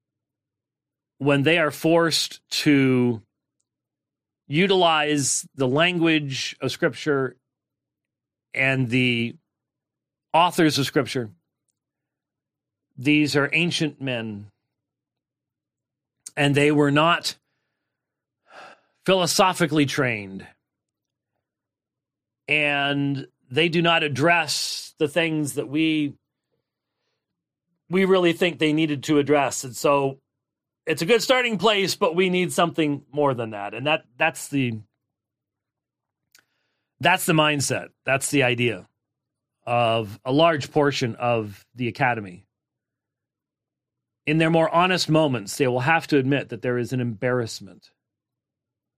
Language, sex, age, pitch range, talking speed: English, male, 40-59, 120-155 Hz, 105 wpm